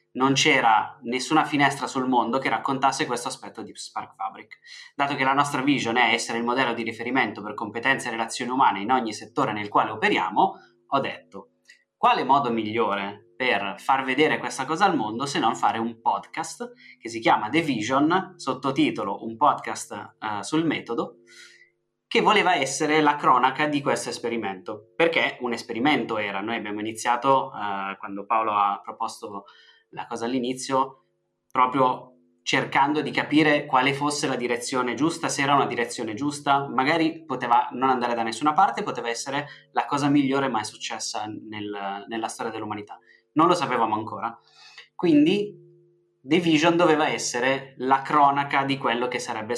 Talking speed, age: 160 wpm, 20-39